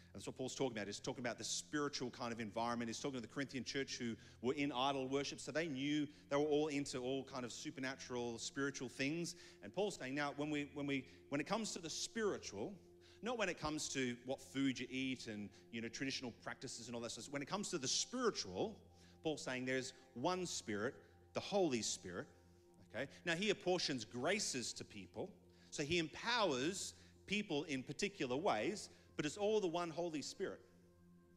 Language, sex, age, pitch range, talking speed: English, male, 40-59, 105-150 Hz, 200 wpm